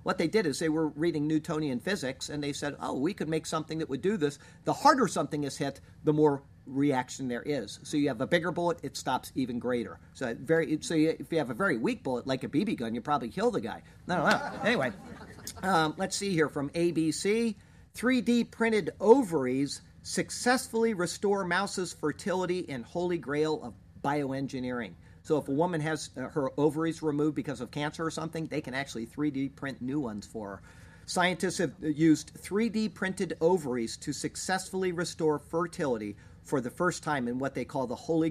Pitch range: 130-175 Hz